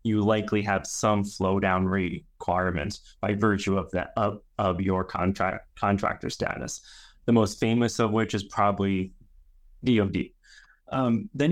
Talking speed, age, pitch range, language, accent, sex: 140 wpm, 20-39, 100-120 Hz, English, American, male